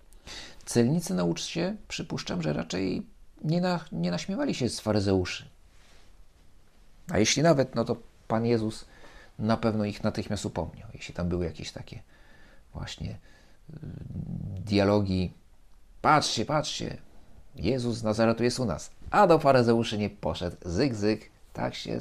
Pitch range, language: 80-125 Hz, Polish